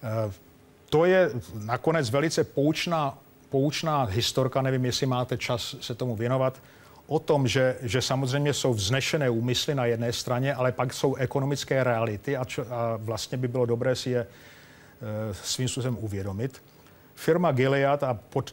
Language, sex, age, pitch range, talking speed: Czech, male, 40-59, 115-135 Hz, 145 wpm